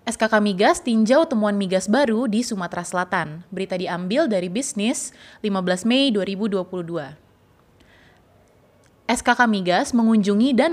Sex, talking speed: female, 110 wpm